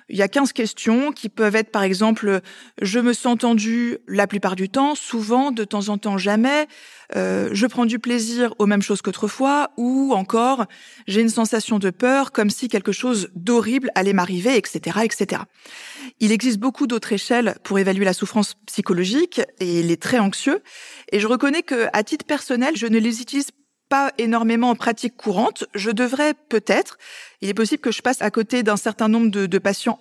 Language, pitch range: French, 210-260 Hz